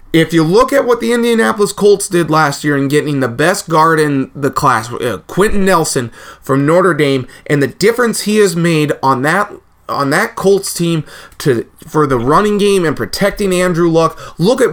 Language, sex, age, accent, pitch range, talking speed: English, male, 30-49, American, 150-195 Hz, 190 wpm